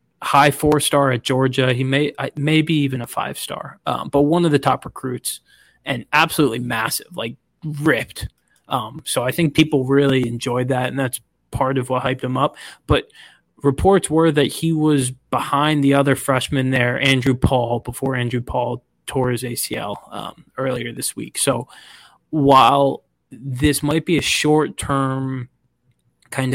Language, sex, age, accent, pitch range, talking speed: English, male, 20-39, American, 125-145 Hz, 155 wpm